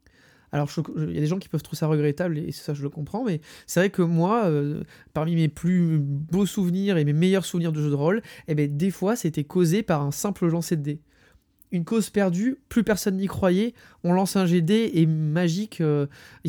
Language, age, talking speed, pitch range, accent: French, 20-39, 225 wpm, 150-180 Hz, French